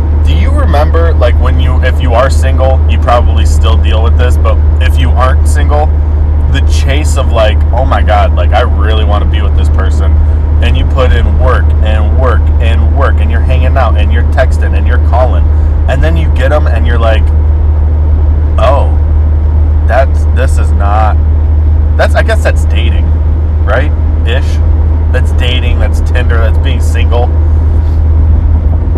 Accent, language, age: American, English, 20-39